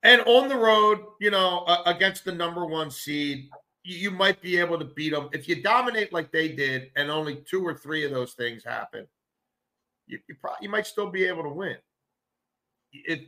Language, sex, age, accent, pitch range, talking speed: English, male, 50-69, American, 125-170 Hz, 210 wpm